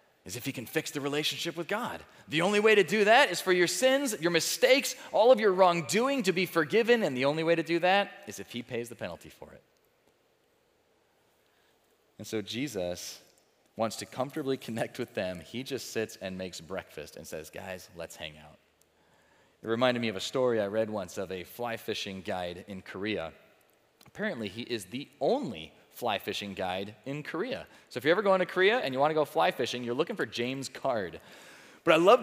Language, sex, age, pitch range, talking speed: English, male, 30-49, 115-175 Hz, 210 wpm